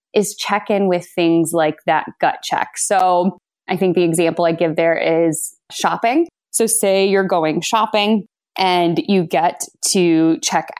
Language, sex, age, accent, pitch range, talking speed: English, female, 20-39, American, 165-195 Hz, 160 wpm